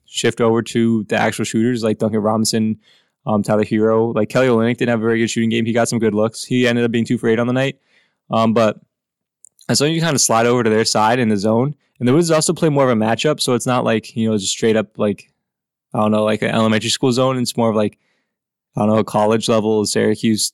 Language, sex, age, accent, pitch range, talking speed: English, male, 20-39, American, 110-125 Hz, 260 wpm